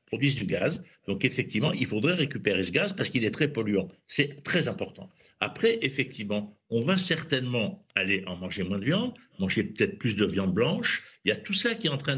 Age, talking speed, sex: 60-79, 215 wpm, male